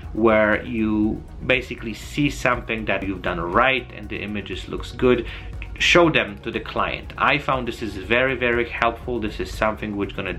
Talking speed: 185 wpm